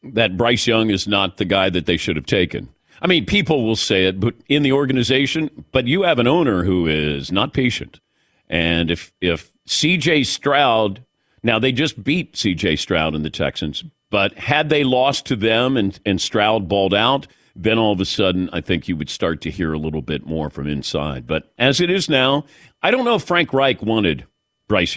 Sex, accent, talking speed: male, American, 210 wpm